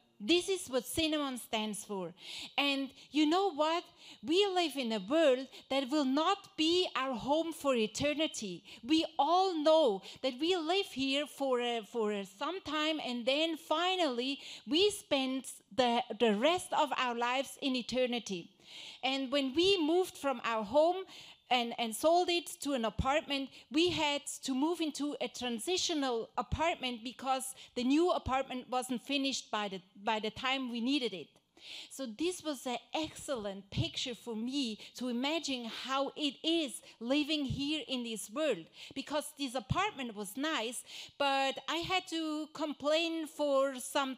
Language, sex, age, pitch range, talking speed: English, female, 40-59, 250-315 Hz, 155 wpm